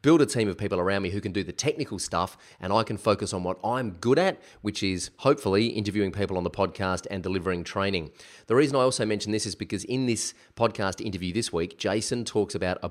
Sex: male